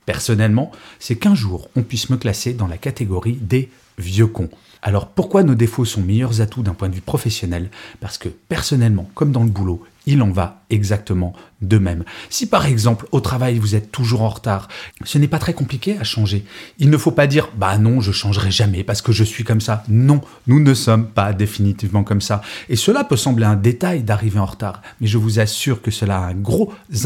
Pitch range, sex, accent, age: 100-130 Hz, male, French, 30-49